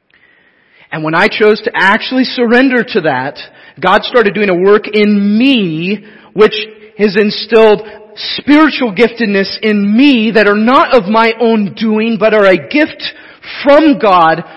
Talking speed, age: 150 wpm, 40-59